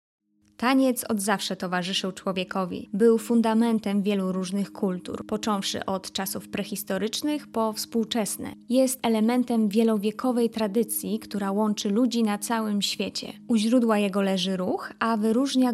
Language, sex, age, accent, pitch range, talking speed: Polish, female, 20-39, native, 200-240 Hz, 125 wpm